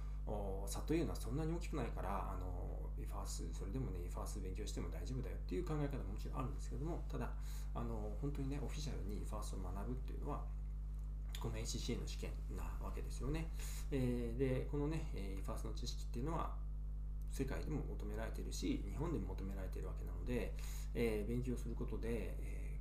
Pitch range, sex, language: 95-145 Hz, male, Japanese